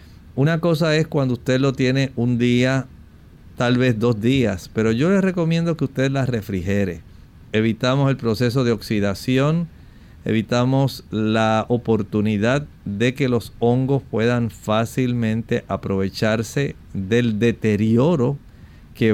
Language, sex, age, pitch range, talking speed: Spanish, male, 50-69, 105-130 Hz, 120 wpm